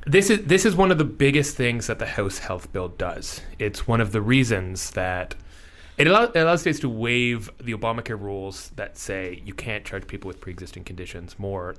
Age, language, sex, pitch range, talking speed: 30-49, English, male, 90-120 Hz, 210 wpm